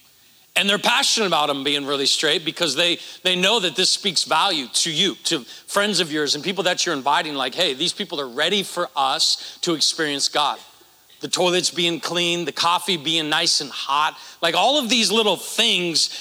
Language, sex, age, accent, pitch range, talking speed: English, male, 40-59, American, 165-220 Hz, 200 wpm